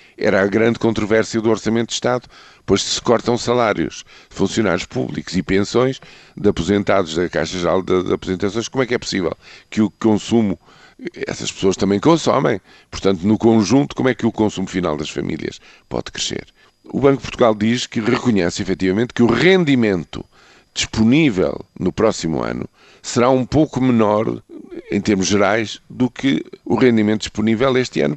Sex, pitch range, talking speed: male, 95-115 Hz, 165 wpm